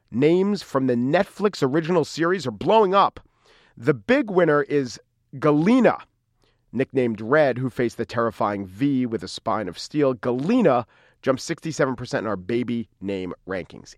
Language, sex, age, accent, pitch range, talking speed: English, male, 40-59, American, 135-185 Hz, 145 wpm